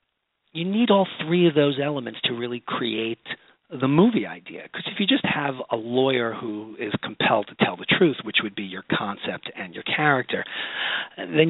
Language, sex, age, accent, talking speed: English, male, 40-59, American, 190 wpm